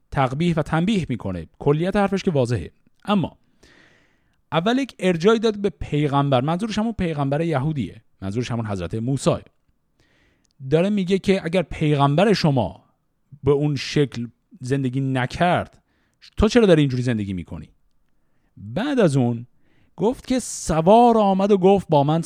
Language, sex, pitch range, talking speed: Persian, male, 125-180 Hz, 135 wpm